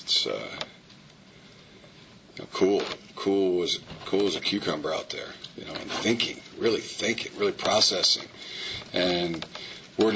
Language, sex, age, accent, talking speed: English, male, 40-59, American, 135 wpm